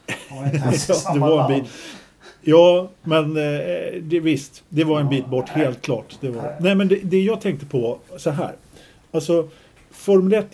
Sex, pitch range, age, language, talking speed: male, 120-155 Hz, 50-69, Swedish, 170 wpm